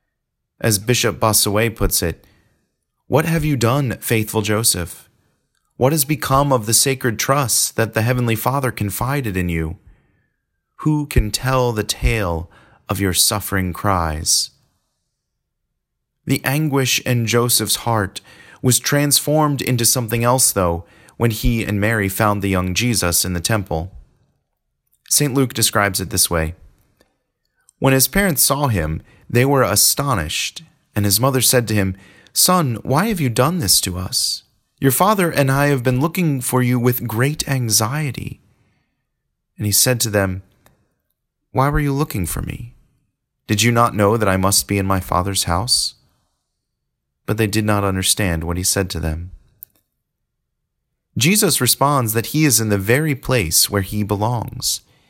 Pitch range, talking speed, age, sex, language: 100-130 Hz, 155 wpm, 30-49, male, English